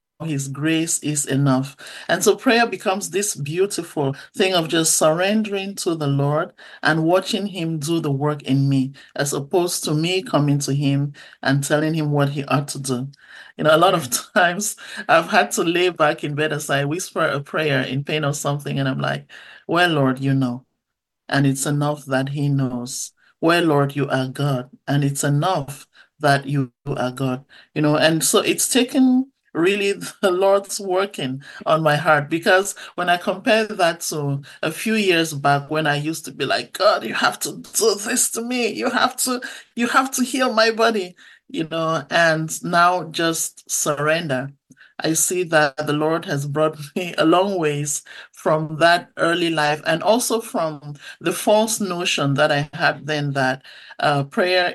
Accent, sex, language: Nigerian, male, English